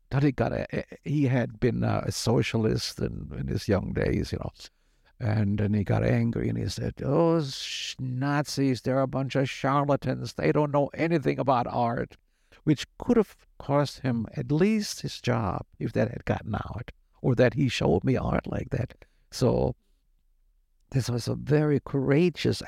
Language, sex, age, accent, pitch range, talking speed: English, male, 60-79, American, 100-135 Hz, 170 wpm